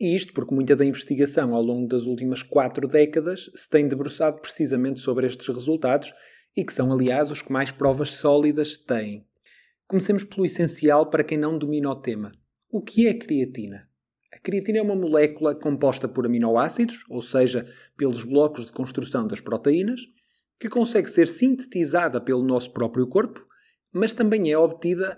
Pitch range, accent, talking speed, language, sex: 130-180 Hz, Portuguese, 170 wpm, Portuguese, male